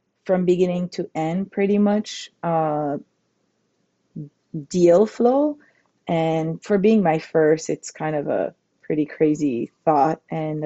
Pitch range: 155-180 Hz